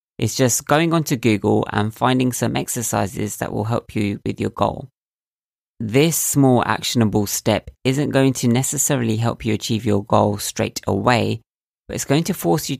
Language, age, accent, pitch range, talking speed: English, 20-39, British, 105-135 Hz, 180 wpm